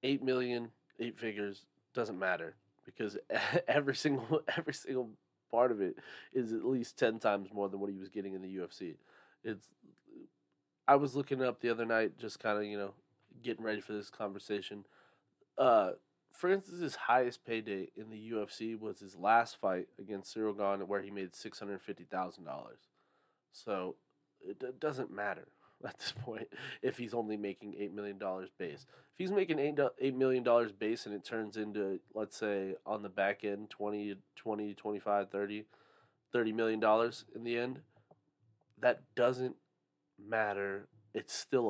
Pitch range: 105-125 Hz